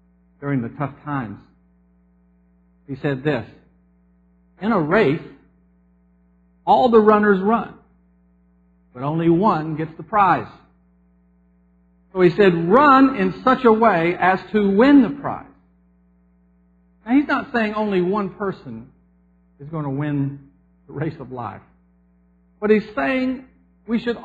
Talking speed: 130 wpm